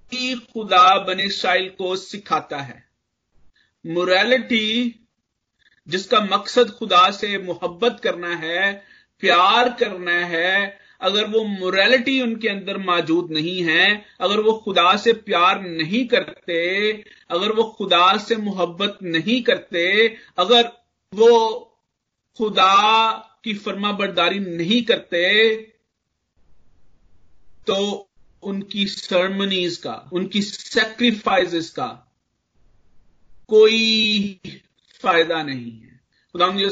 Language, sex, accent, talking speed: Hindi, male, native, 95 wpm